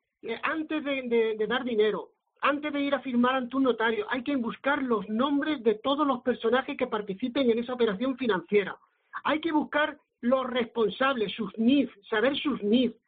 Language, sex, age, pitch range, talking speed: Spanish, male, 50-69, 220-275 Hz, 175 wpm